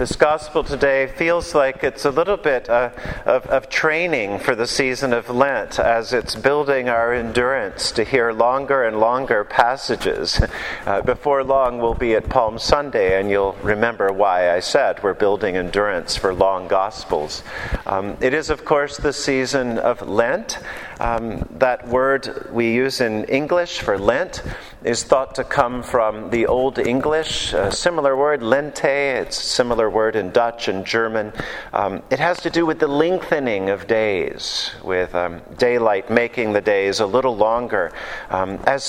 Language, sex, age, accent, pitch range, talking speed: English, male, 40-59, American, 110-140 Hz, 165 wpm